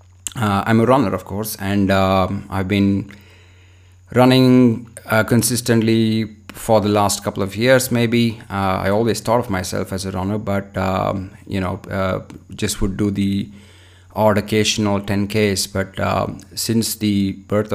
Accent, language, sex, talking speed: Indian, English, male, 155 wpm